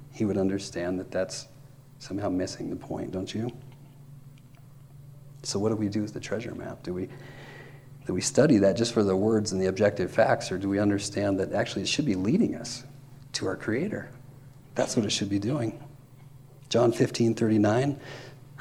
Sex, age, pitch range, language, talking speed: male, 40-59, 100-135 Hz, English, 175 wpm